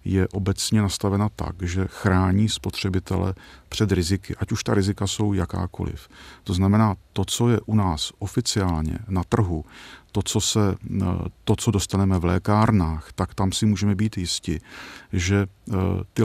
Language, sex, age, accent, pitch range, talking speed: Czech, male, 40-59, native, 90-105 Hz, 145 wpm